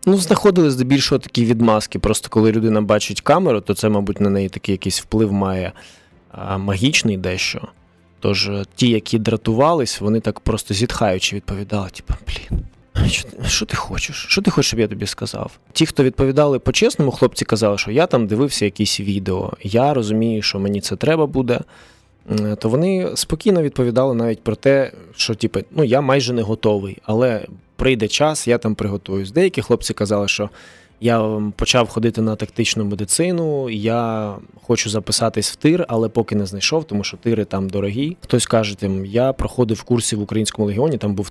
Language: Ukrainian